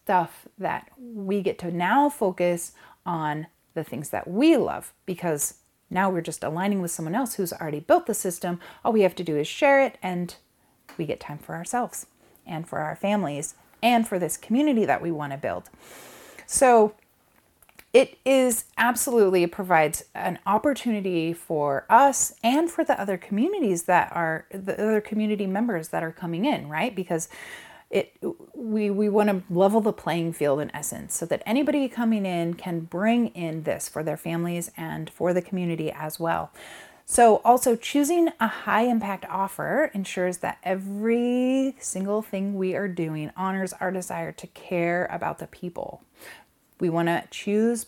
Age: 30-49